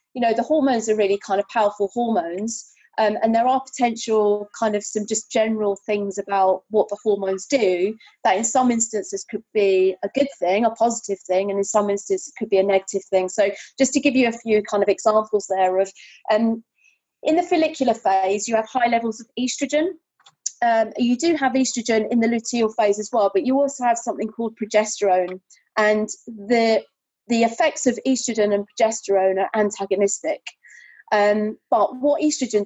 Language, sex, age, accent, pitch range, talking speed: English, female, 30-49, British, 200-240 Hz, 190 wpm